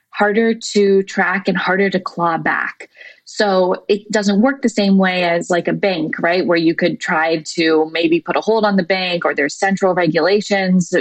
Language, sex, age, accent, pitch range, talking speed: English, female, 20-39, American, 165-220 Hz, 195 wpm